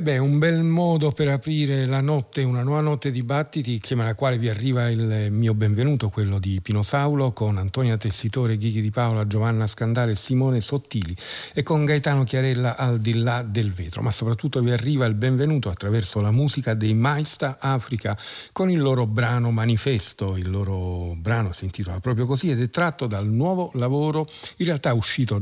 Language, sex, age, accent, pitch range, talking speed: Italian, male, 50-69, native, 105-135 Hz, 180 wpm